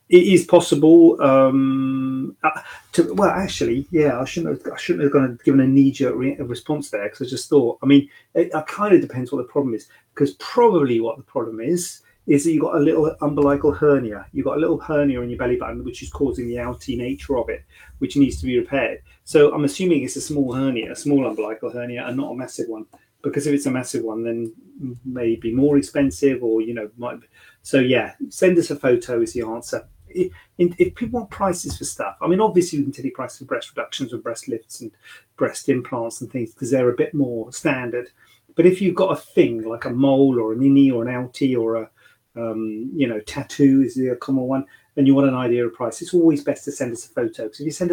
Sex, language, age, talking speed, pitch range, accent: male, English, 30-49, 230 wpm, 120-150 Hz, British